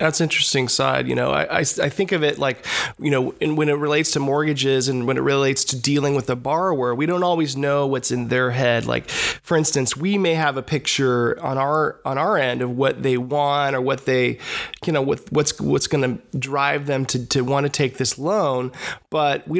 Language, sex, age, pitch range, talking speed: English, male, 20-39, 130-155 Hz, 225 wpm